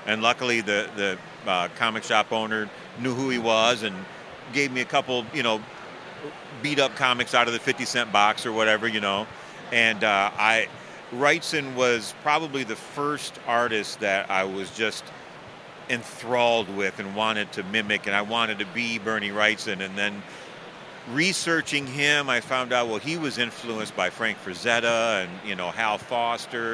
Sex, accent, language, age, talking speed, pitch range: male, American, English, 40-59, 170 wpm, 110-125 Hz